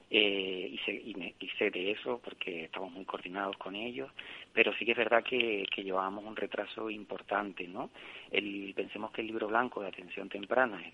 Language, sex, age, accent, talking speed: Spanish, male, 30-49, Spanish, 180 wpm